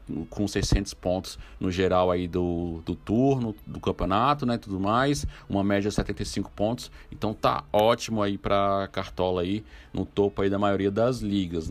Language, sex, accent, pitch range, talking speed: Portuguese, male, Brazilian, 90-105 Hz, 170 wpm